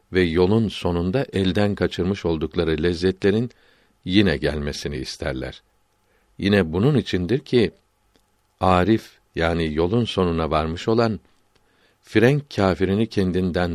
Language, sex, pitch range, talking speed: Turkish, male, 85-110 Hz, 100 wpm